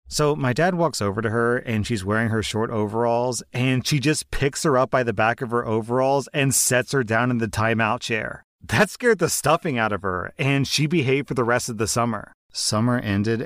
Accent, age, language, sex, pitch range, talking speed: American, 30-49, English, male, 110-135 Hz, 225 wpm